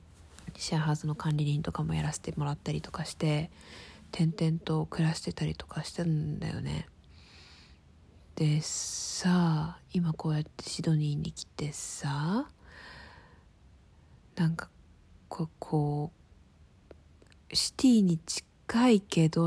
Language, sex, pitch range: Japanese, female, 145-190 Hz